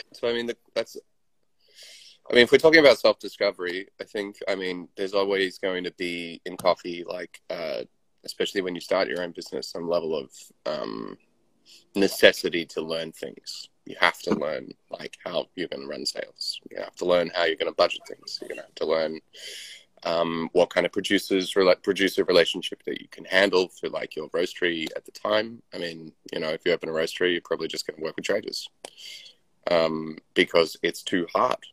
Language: English